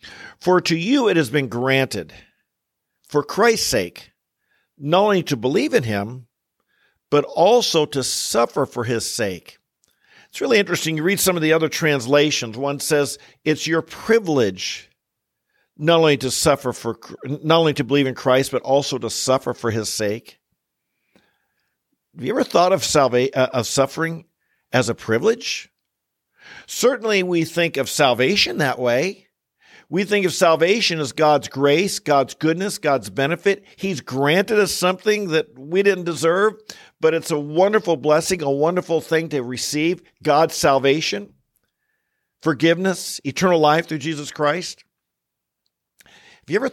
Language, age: English, 50-69